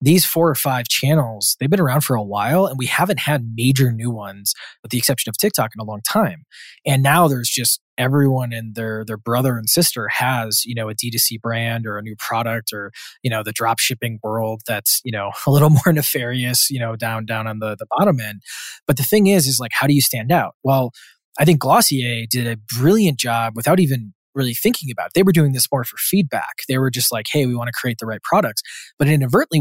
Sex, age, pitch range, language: male, 20-39, 115-145 Hz, English